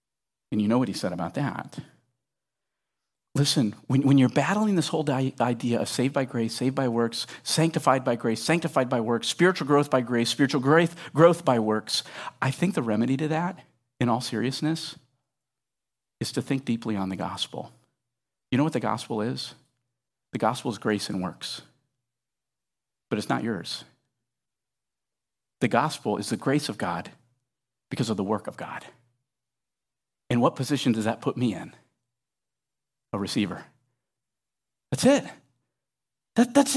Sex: male